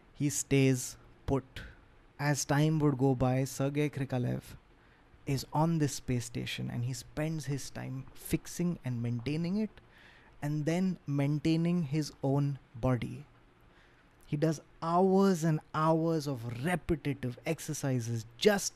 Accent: Indian